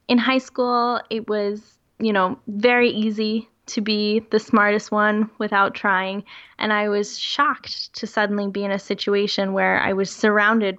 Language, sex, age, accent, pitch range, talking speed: English, female, 10-29, American, 200-225 Hz, 165 wpm